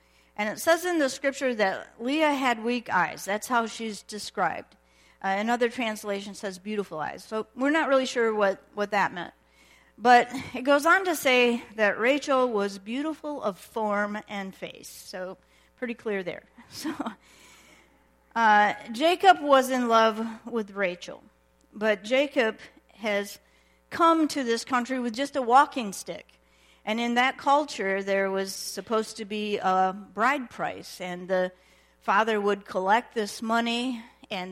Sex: female